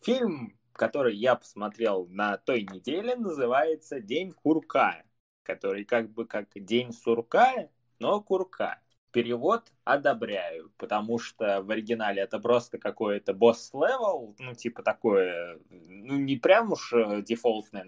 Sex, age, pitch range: male, 20-39, 105-145 Hz